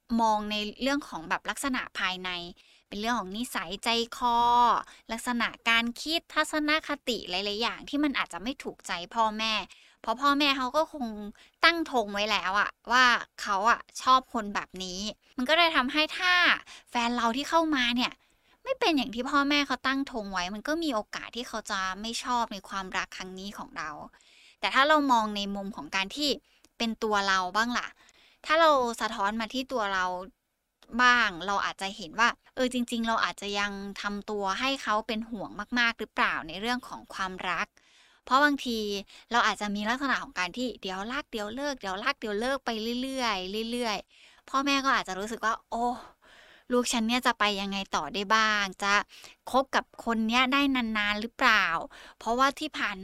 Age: 20-39